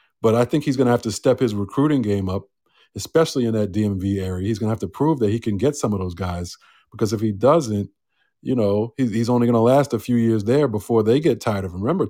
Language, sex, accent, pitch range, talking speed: English, male, American, 100-135 Hz, 270 wpm